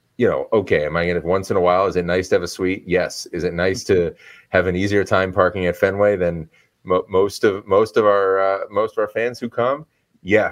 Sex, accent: male, American